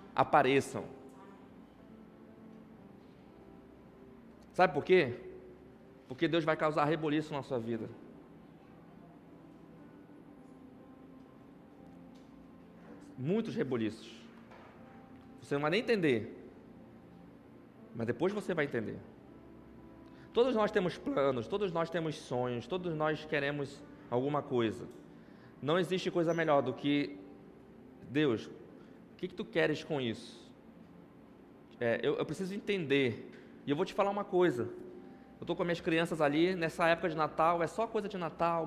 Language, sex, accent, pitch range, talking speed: Portuguese, male, Brazilian, 140-185 Hz, 125 wpm